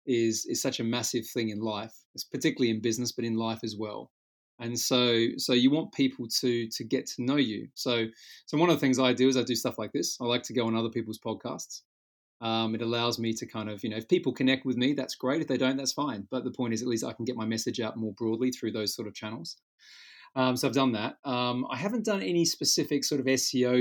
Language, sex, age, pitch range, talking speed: English, male, 30-49, 110-130 Hz, 265 wpm